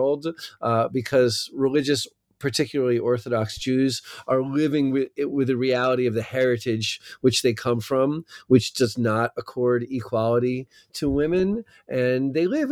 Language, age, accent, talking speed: English, 40-59, American, 135 wpm